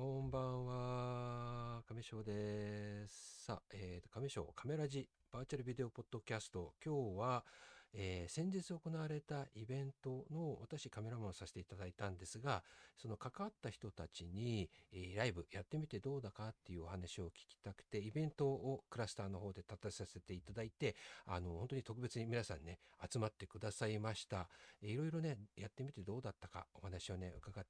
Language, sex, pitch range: Japanese, male, 95-135 Hz